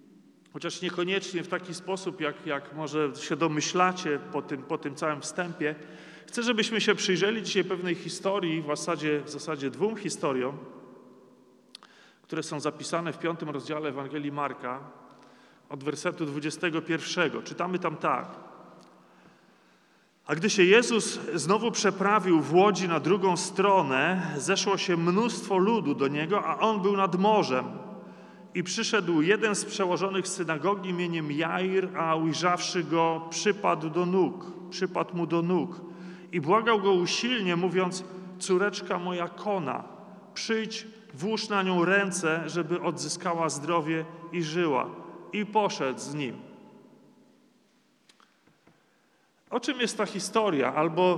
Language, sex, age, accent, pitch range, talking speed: Polish, male, 30-49, native, 155-195 Hz, 130 wpm